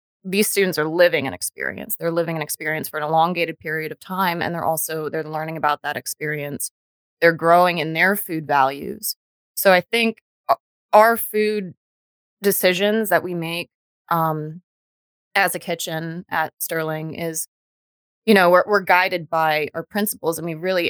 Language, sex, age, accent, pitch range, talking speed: English, female, 20-39, American, 150-175 Hz, 165 wpm